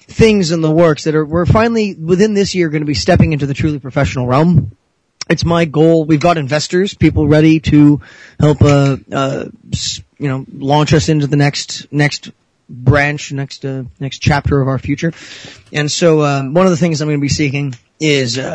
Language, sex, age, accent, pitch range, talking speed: English, male, 30-49, American, 135-165 Hz, 195 wpm